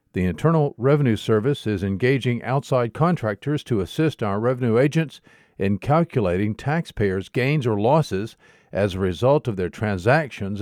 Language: English